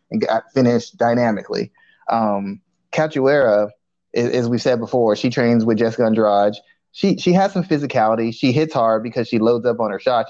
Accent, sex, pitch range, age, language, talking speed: American, male, 110-125 Hz, 20-39, English, 175 wpm